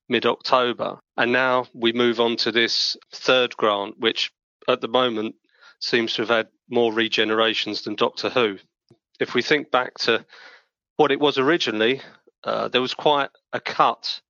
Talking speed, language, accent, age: 160 wpm, English, British, 30-49